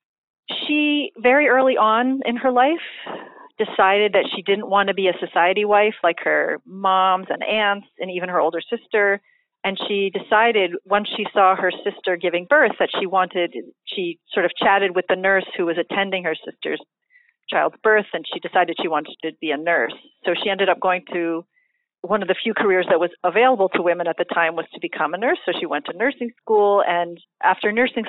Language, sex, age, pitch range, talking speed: English, female, 40-59, 175-220 Hz, 205 wpm